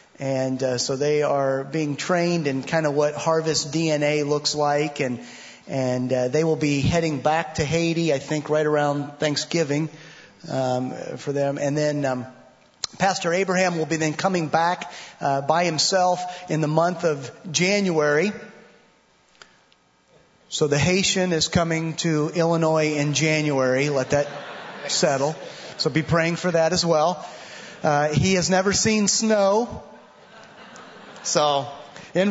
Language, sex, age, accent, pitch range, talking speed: English, male, 30-49, American, 150-185 Hz, 145 wpm